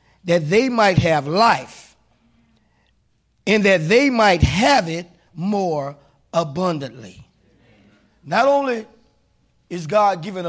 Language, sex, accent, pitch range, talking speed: English, male, American, 165-220 Hz, 105 wpm